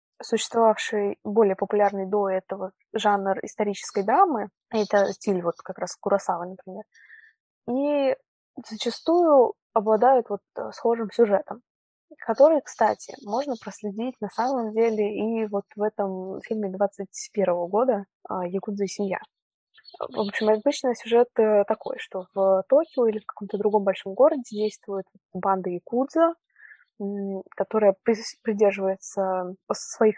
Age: 20-39